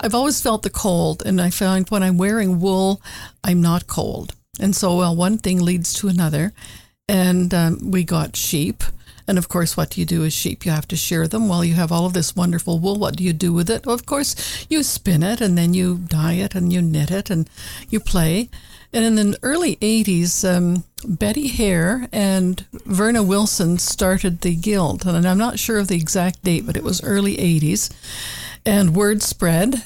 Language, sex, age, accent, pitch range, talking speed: English, female, 60-79, American, 175-205 Hz, 205 wpm